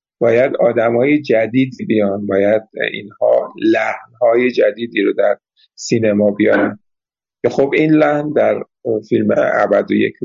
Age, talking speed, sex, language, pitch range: 50-69, 115 wpm, male, Persian, 110-145 Hz